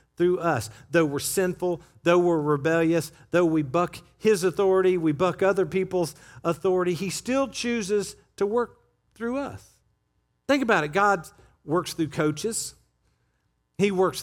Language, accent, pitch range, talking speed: English, American, 135-190 Hz, 145 wpm